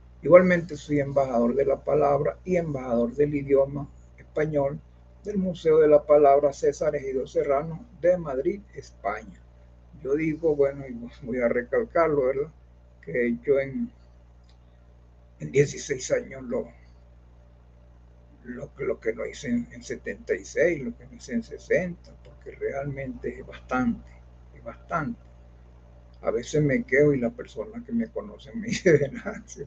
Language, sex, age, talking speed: Spanish, male, 60-79, 140 wpm